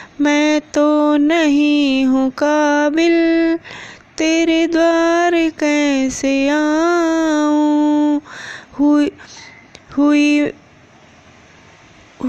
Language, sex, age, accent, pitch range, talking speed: Hindi, female, 20-39, native, 200-295 Hz, 55 wpm